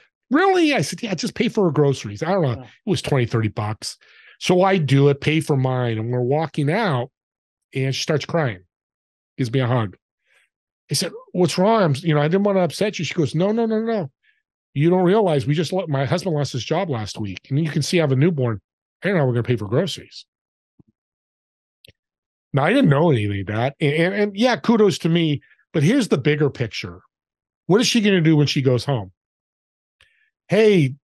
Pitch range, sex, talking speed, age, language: 125-175 Hz, male, 220 wpm, 40-59, English